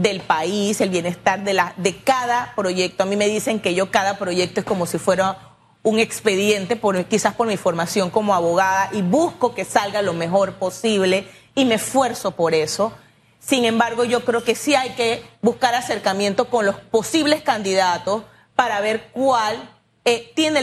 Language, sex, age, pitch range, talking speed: Spanish, female, 30-49, 195-245 Hz, 175 wpm